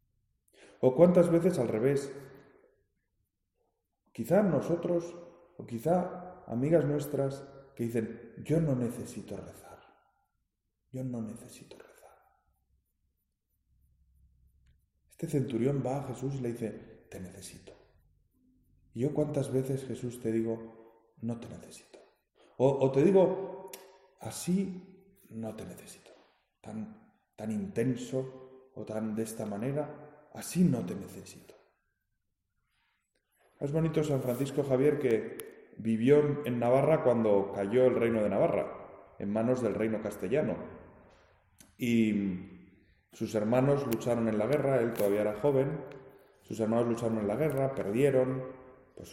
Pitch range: 110-140 Hz